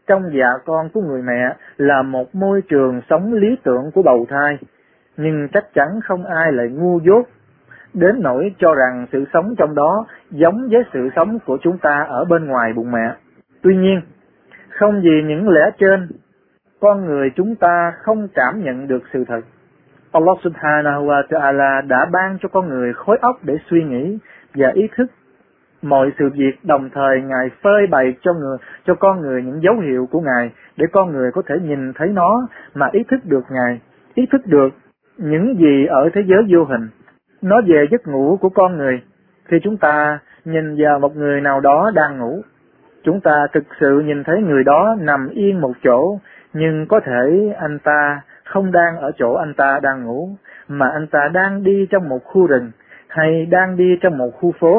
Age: 20-39